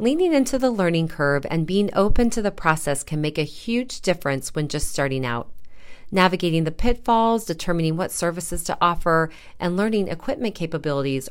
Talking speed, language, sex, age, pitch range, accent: 170 wpm, English, female, 40-59, 150-200 Hz, American